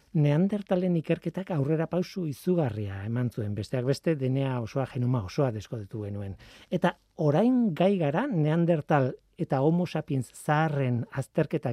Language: Spanish